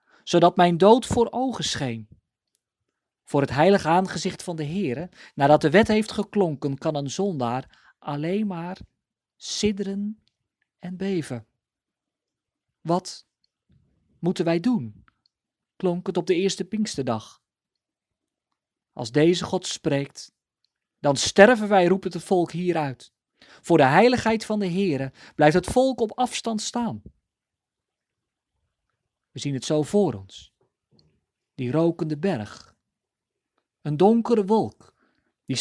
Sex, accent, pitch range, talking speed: male, Dutch, 145-210 Hz, 120 wpm